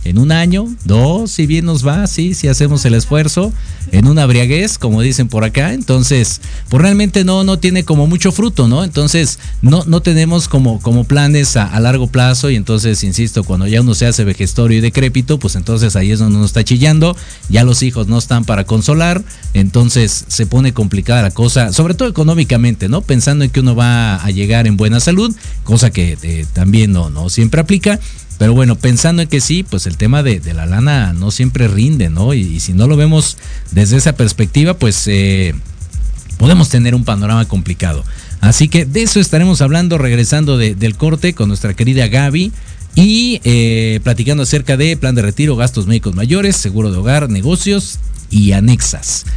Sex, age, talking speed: male, 50-69, 195 wpm